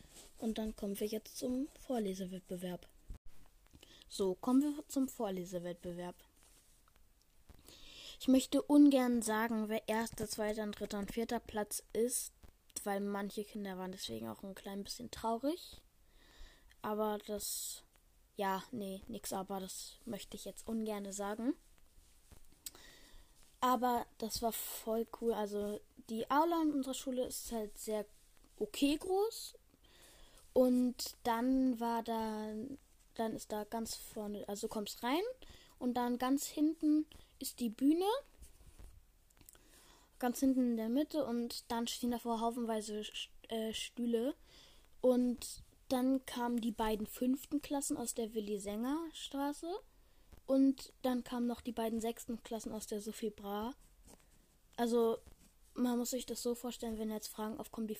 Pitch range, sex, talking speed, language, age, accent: 215-255 Hz, female, 130 wpm, German, 10-29, German